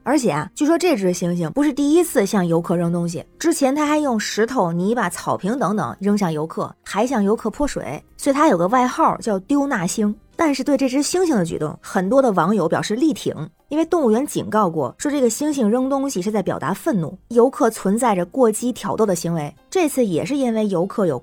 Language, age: Chinese, 20-39